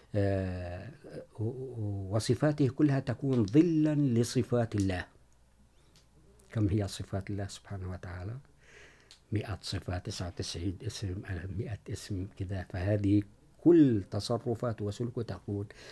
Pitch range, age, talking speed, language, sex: 95-120 Hz, 50-69, 85 wpm, Urdu, male